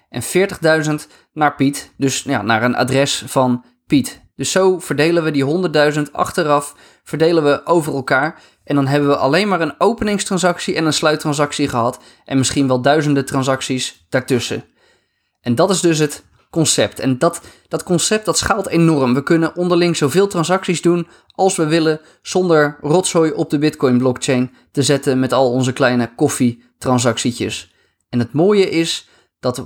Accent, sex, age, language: Dutch, male, 20-39, Dutch